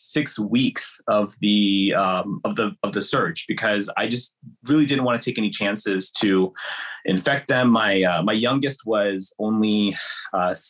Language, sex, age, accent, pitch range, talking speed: English, male, 30-49, American, 105-135 Hz, 170 wpm